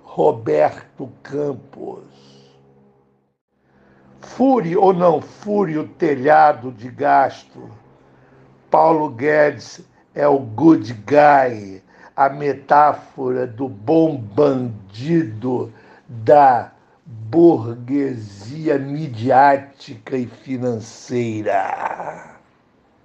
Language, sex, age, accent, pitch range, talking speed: Portuguese, male, 60-79, Brazilian, 120-150 Hz, 70 wpm